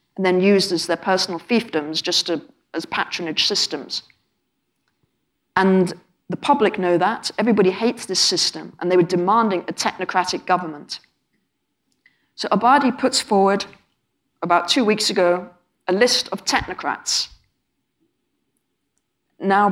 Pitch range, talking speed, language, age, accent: 175-205 Hz, 120 wpm, English, 40-59, British